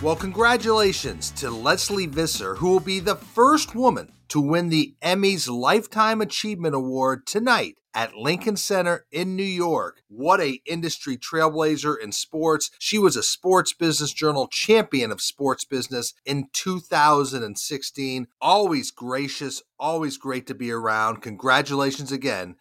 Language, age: English, 40-59